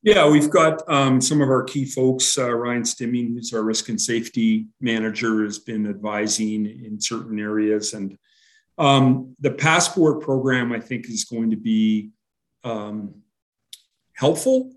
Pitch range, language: 110-130 Hz, English